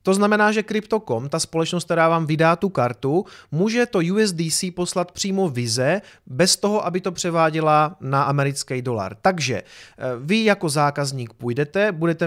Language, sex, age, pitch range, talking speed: Czech, male, 30-49, 130-175 Hz, 150 wpm